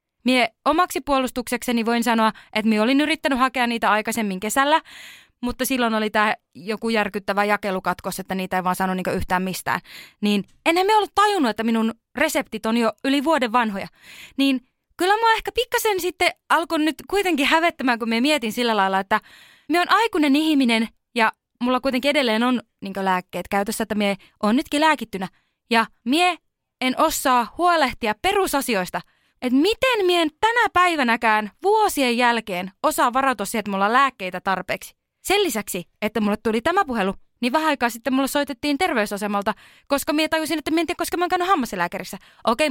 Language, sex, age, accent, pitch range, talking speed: Finnish, female, 20-39, native, 215-330 Hz, 170 wpm